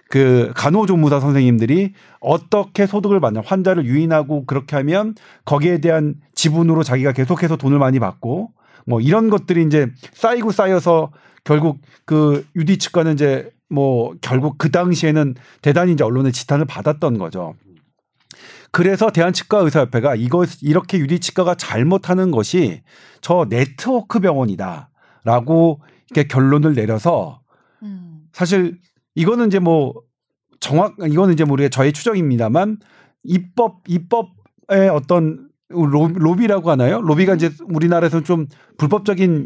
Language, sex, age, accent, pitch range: Korean, male, 40-59, native, 145-185 Hz